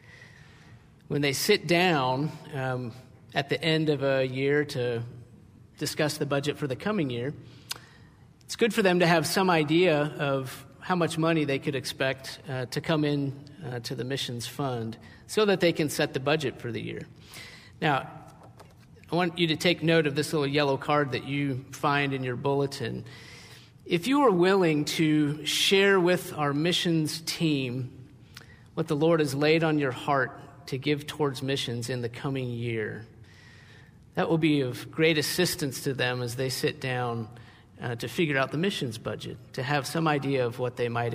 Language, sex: English, male